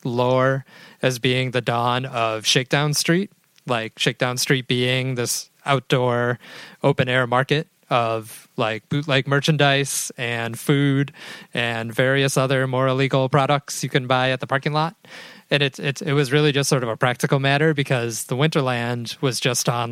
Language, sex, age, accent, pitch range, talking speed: English, male, 30-49, American, 120-145 Hz, 165 wpm